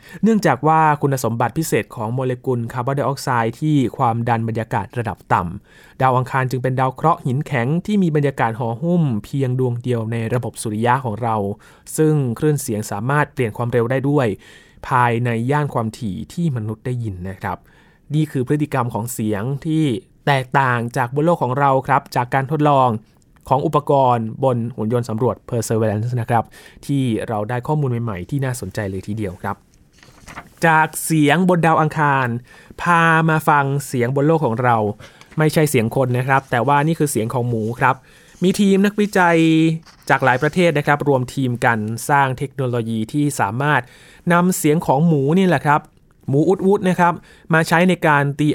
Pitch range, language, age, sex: 115-155 Hz, Thai, 20-39, male